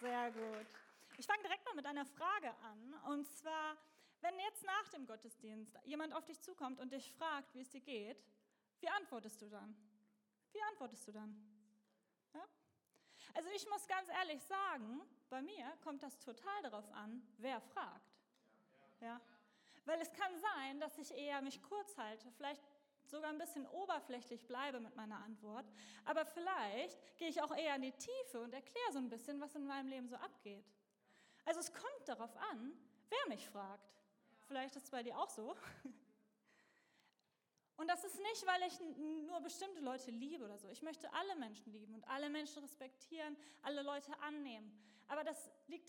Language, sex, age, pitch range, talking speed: German, female, 30-49, 230-320 Hz, 175 wpm